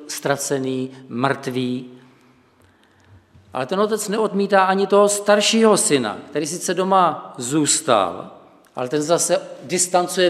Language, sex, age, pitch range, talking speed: Czech, male, 50-69, 105-165 Hz, 105 wpm